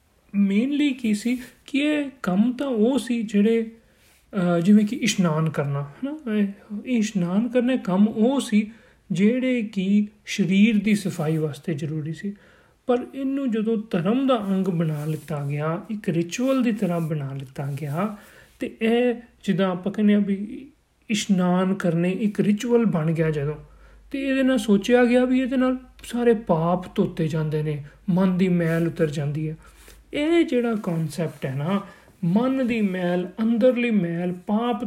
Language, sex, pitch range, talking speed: Punjabi, male, 170-230 Hz, 135 wpm